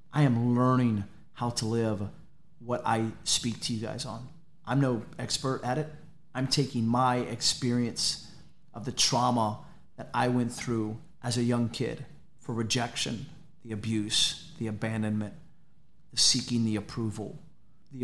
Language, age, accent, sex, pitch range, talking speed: English, 30-49, American, male, 115-145 Hz, 145 wpm